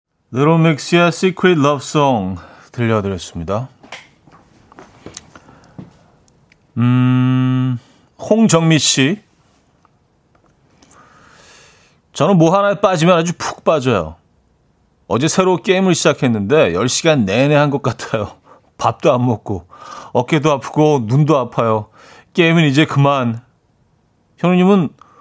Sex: male